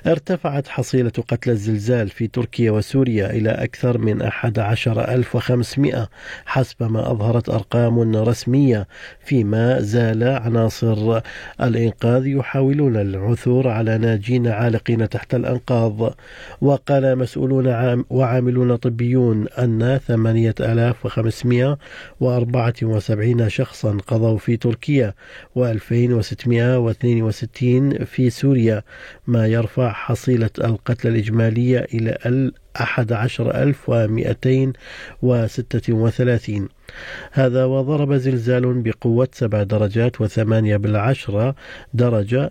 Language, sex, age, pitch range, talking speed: Arabic, male, 50-69, 110-125 Hz, 85 wpm